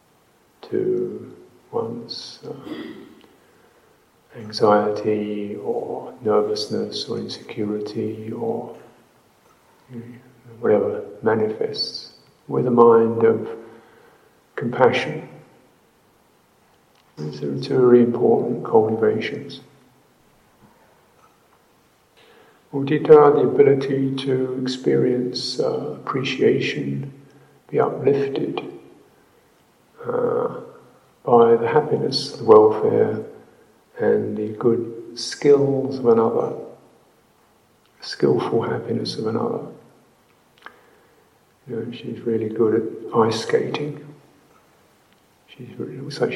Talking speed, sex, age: 75 wpm, male, 50-69